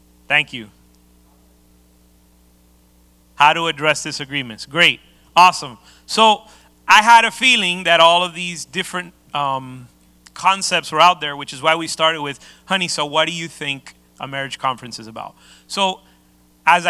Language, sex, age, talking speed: English, male, 30-49, 150 wpm